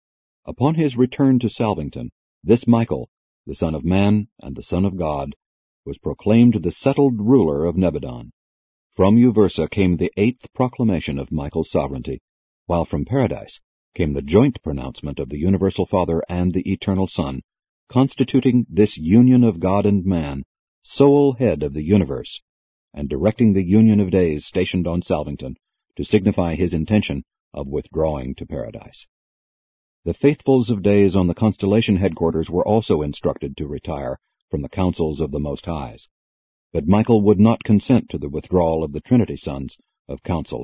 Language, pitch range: English, 80-115 Hz